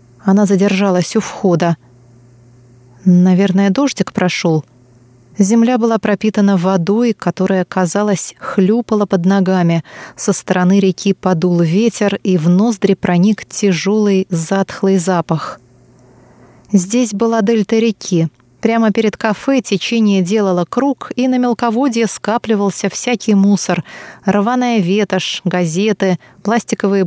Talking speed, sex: 105 wpm, female